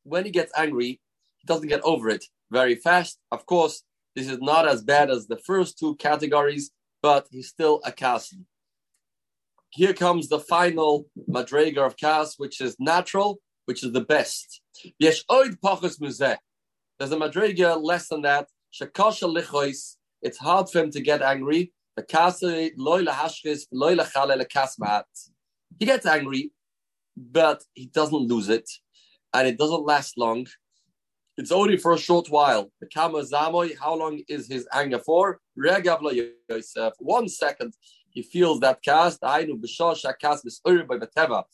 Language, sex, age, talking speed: English, male, 30-49, 125 wpm